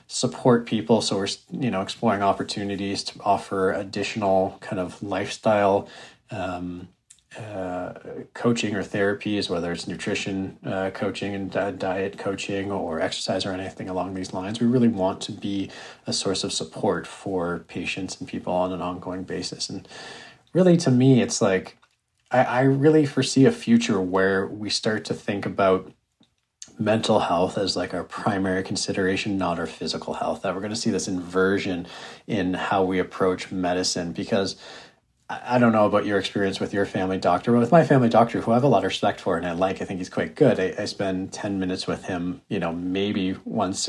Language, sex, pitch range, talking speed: English, male, 95-115 Hz, 185 wpm